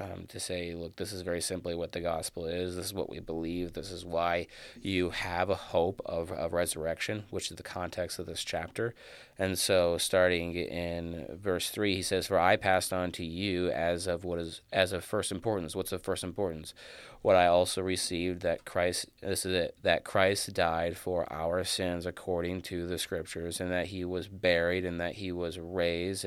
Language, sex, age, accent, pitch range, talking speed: English, male, 30-49, American, 85-95 Hz, 205 wpm